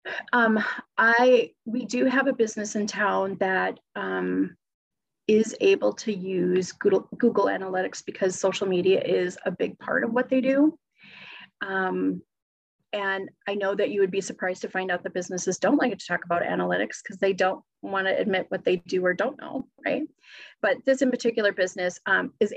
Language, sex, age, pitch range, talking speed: English, female, 30-49, 190-235 Hz, 185 wpm